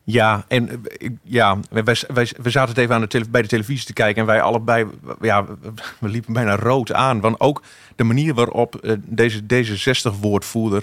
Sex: male